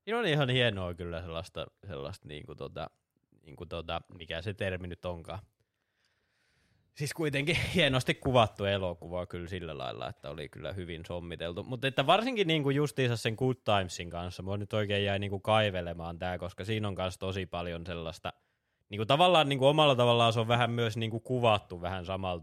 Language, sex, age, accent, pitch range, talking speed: Finnish, male, 20-39, native, 85-110 Hz, 185 wpm